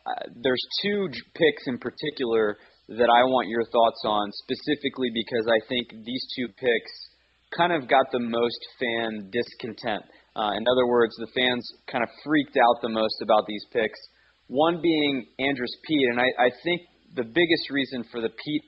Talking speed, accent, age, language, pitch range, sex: 175 wpm, American, 20-39, English, 110-130 Hz, male